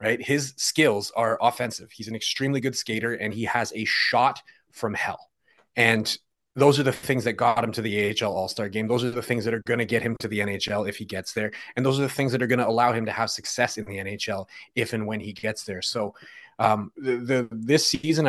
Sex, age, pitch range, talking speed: male, 30-49, 110-125 Hz, 250 wpm